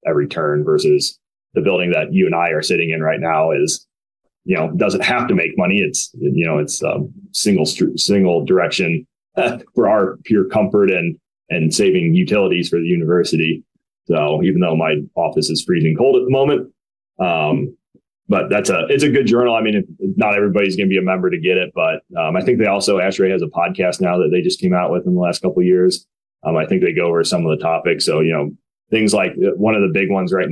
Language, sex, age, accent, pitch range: Chinese, male, 30-49, American, 85-100 Hz